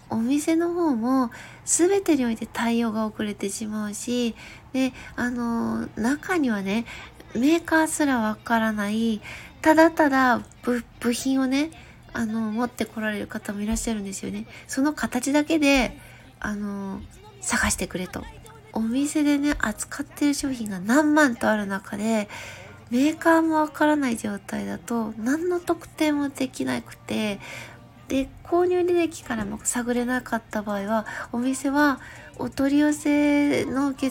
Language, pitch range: Japanese, 220-290 Hz